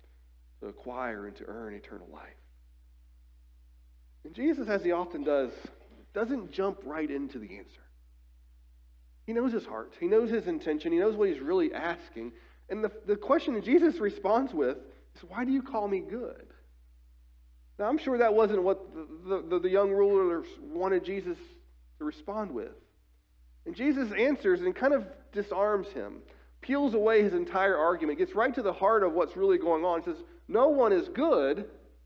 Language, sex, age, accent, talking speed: English, male, 40-59, American, 170 wpm